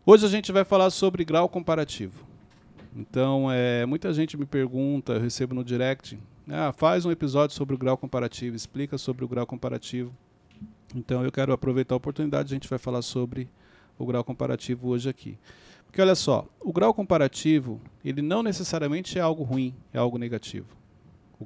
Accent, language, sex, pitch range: Brazilian, Portuguese, male, 120-155 Hz